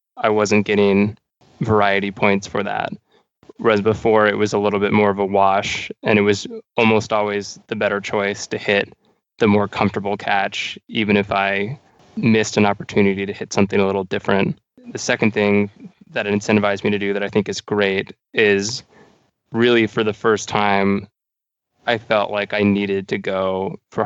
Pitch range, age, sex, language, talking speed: 100-110 Hz, 20-39, male, English, 180 wpm